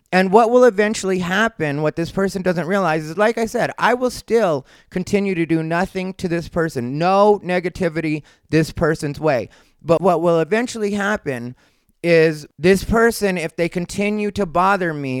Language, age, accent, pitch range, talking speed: English, 30-49, American, 155-195 Hz, 170 wpm